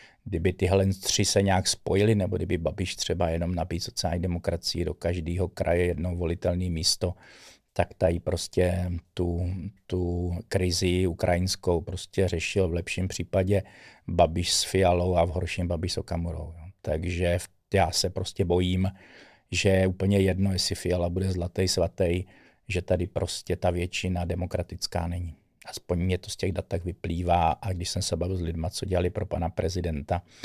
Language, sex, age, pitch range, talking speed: Czech, male, 50-69, 85-95 Hz, 160 wpm